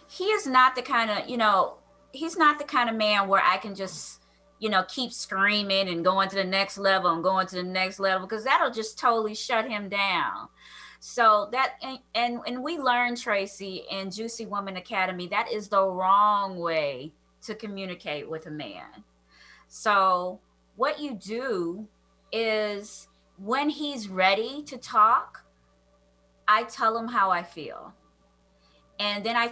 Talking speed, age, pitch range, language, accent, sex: 165 wpm, 20-39, 195-245 Hz, English, American, female